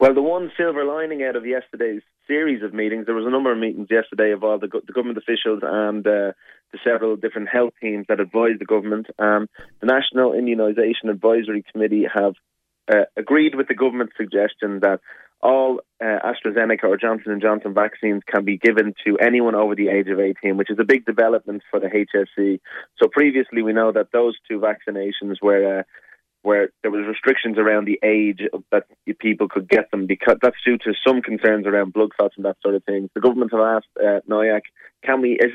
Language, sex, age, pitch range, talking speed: English, male, 20-39, 105-115 Hz, 200 wpm